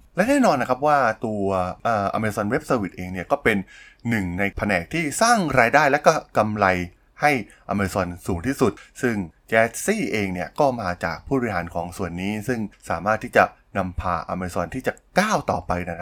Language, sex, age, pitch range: Thai, male, 20-39, 90-115 Hz